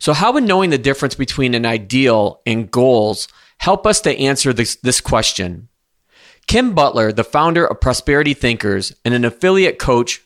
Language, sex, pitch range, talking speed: English, male, 120-145 Hz, 170 wpm